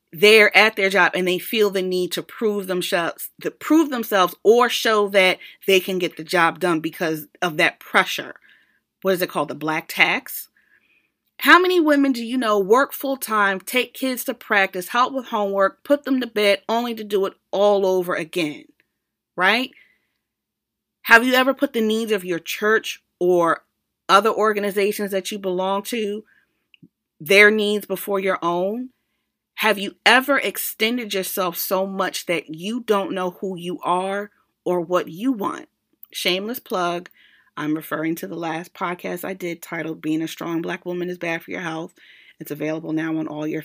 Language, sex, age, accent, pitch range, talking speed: English, female, 30-49, American, 175-225 Hz, 175 wpm